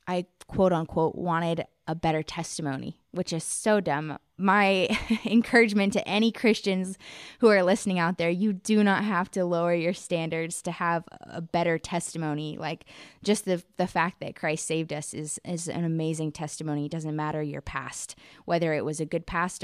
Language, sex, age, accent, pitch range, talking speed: English, female, 20-39, American, 160-195 Hz, 180 wpm